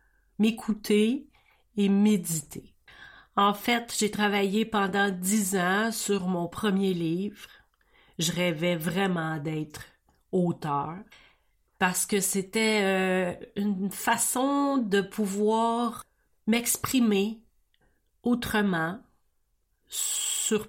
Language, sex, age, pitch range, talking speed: French, female, 40-59, 185-230 Hz, 85 wpm